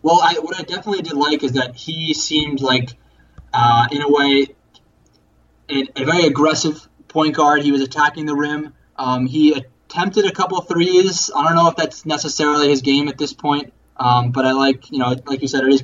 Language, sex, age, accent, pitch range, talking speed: English, male, 20-39, American, 130-150 Hz, 205 wpm